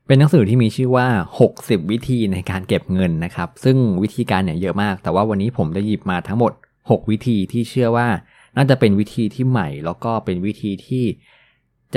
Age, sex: 20-39, male